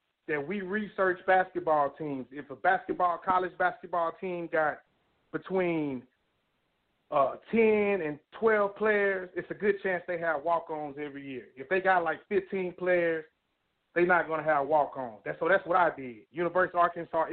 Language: English